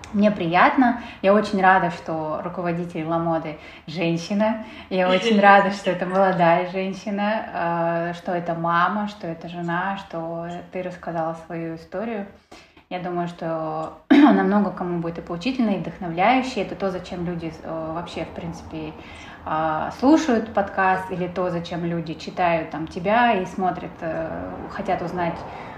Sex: female